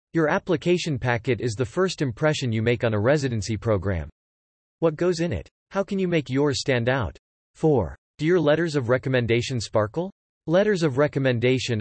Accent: American